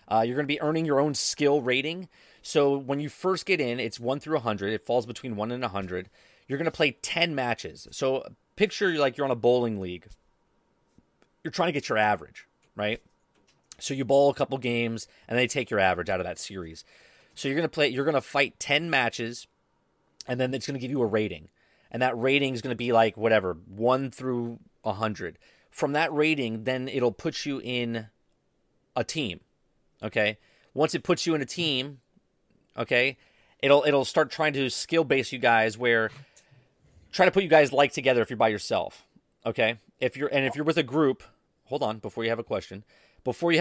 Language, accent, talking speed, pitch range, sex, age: English, American, 215 wpm, 115-150 Hz, male, 30-49